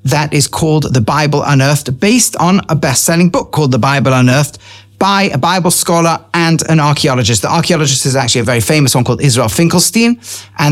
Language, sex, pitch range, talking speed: English, male, 130-180 Hz, 190 wpm